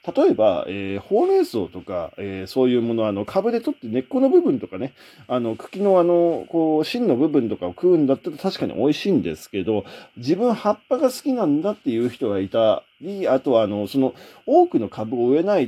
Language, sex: Japanese, male